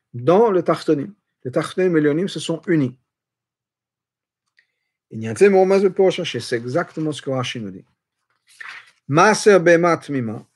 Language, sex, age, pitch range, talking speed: French, male, 50-69, 125-165 Hz, 150 wpm